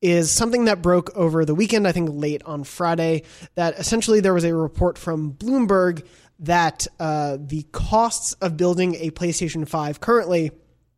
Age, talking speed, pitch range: 20-39, 165 wpm, 155-180 Hz